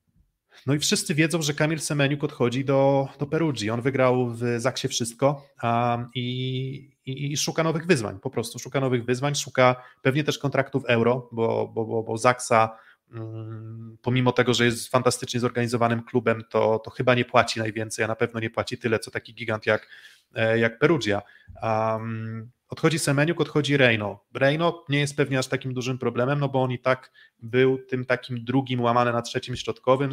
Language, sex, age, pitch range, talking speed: Polish, male, 20-39, 115-140 Hz, 180 wpm